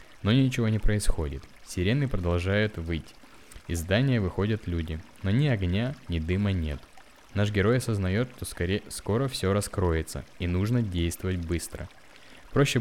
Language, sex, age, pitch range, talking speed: Russian, male, 20-39, 85-115 Hz, 135 wpm